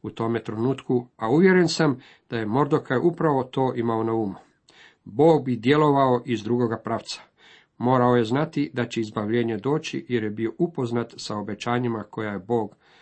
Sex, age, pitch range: male, 50-69, 115-130 Hz